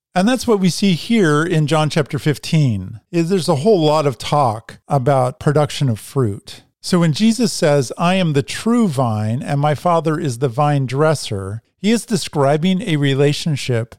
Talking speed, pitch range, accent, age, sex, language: 180 wpm, 130-175 Hz, American, 50-69, male, English